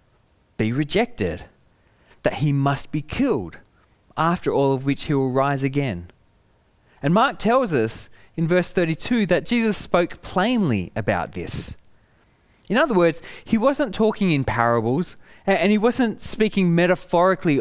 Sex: male